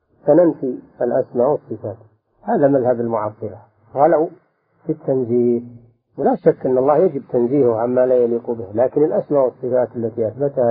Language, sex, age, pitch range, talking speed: Arabic, male, 50-69, 115-145 Hz, 135 wpm